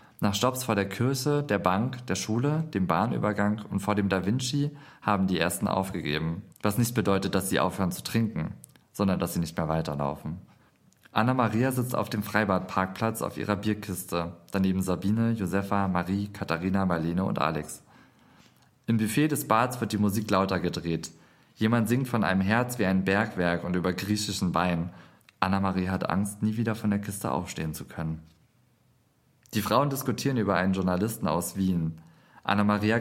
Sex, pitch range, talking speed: male, 90-110 Hz, 165 wpm